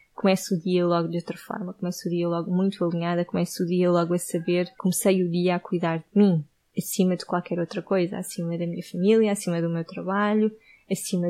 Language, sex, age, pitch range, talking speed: Portuguese, female, 20-39, 175-200 Hz, 210 wpm